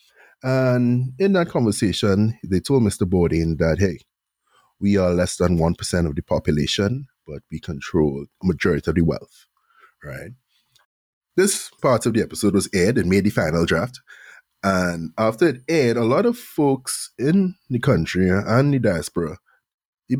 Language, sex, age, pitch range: English, male, 30-49, 90-125 Hz